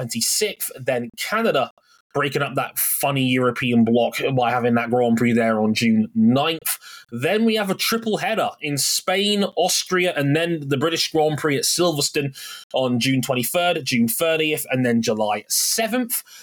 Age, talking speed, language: 20-39, 165 wpm, English